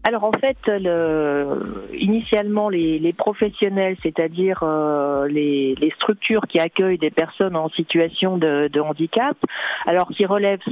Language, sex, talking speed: French, female, 140 wpm